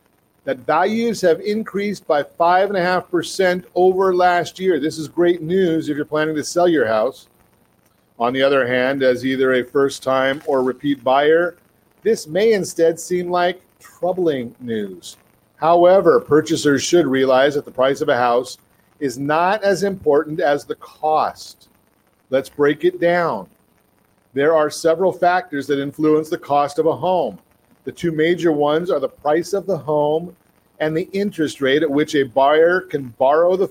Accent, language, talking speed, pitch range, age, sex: American, English, 160 wpm, 140-180 Hz, 40-59, male